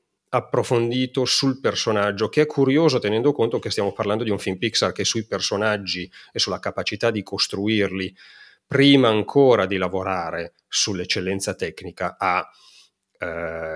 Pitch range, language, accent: 95-120 Hz, Italian, native